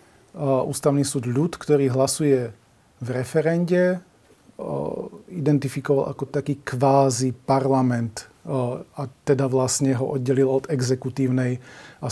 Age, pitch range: 40-59, 130-145 Hz